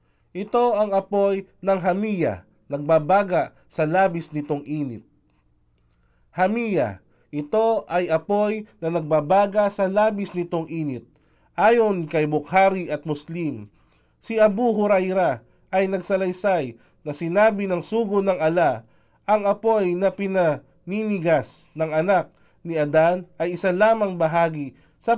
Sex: male